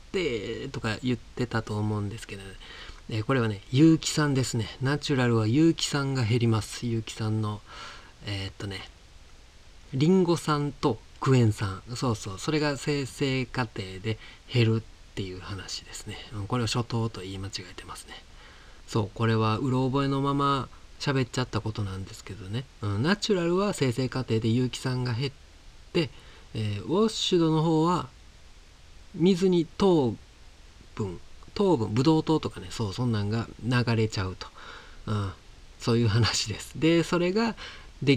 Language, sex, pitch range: Japanese, male, 100-140 Hz